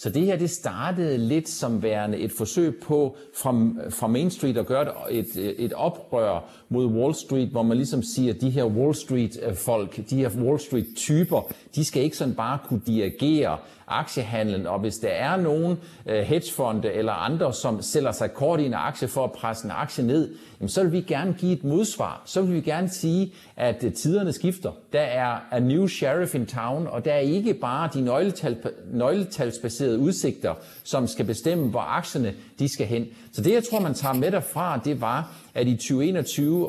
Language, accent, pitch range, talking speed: Danish, native, 115-155 Hz, 190 wpm